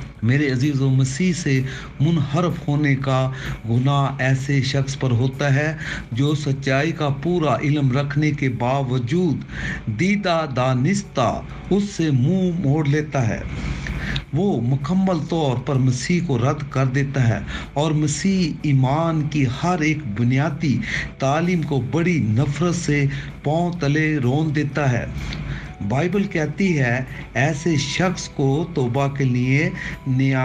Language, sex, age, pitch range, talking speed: Urdu, male, 60-79, 135-165 Hz, 130 wpm